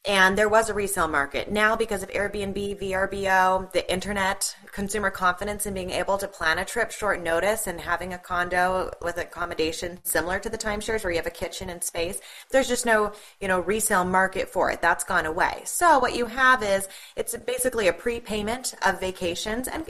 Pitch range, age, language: 180-220 Hz, 20-39, English